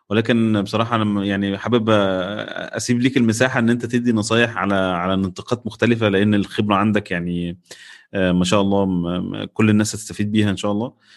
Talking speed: 165 wpm